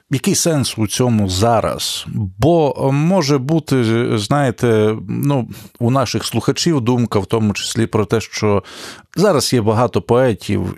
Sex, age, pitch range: male, 40-59, 105-130 Hz